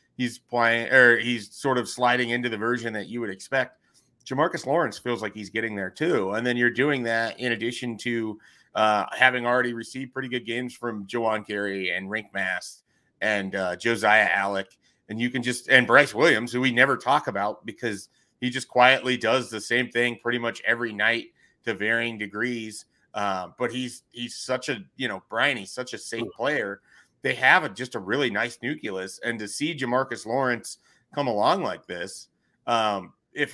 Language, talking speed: English, 190 wpm